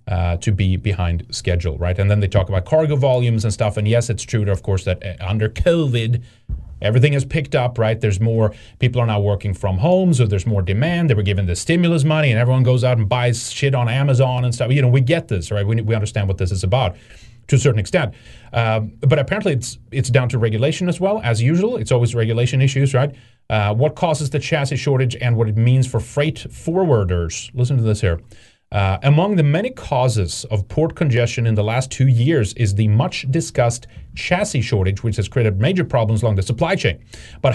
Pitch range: 105-140 Hz